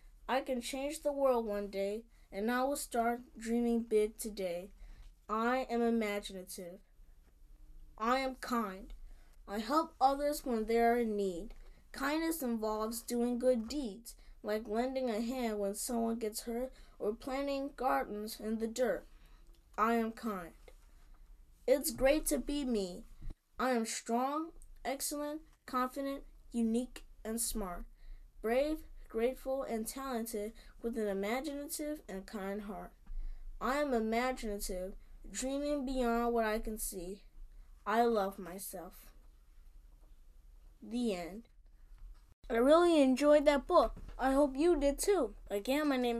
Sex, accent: female, American